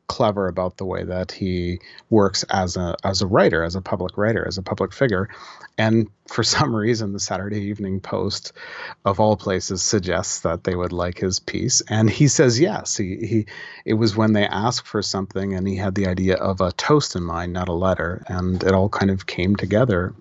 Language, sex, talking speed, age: English, male, 210 wpm, 30-49